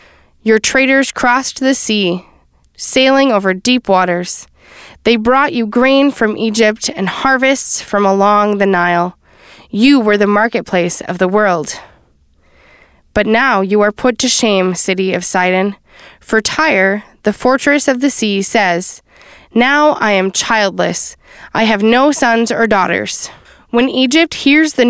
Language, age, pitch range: English, 20-39, 200-255 Hz